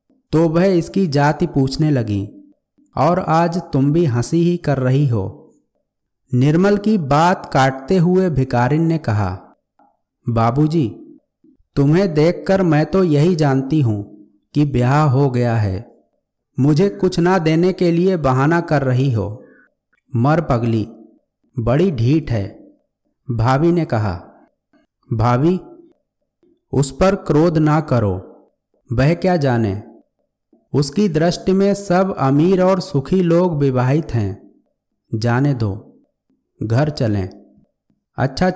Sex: male